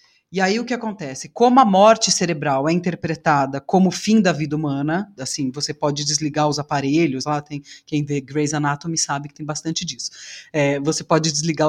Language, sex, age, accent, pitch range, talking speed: Portuguese, female, 30-49, Brazilian, 150-195 Hz, 195 wpm